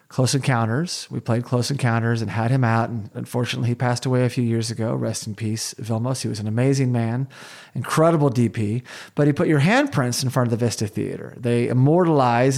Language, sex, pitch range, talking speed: English, male, 120-155 Hz, 205 wpm